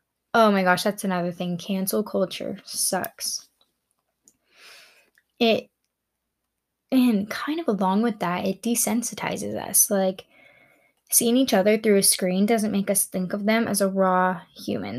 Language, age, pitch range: English, 10-29, 185-220 Hz